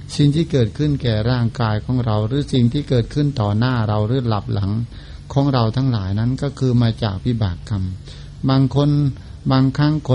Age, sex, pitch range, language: 60-79, male, 110-135 Hz, Thai